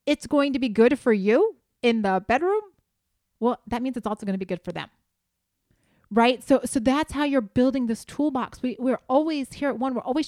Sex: female